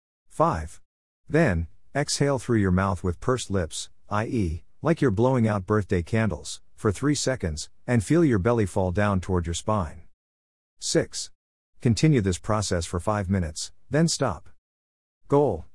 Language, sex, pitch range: English, male, 90-115 Hz